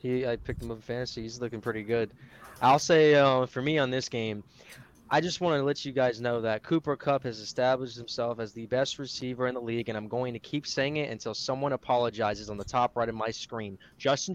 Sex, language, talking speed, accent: male, English, 245 wpm, American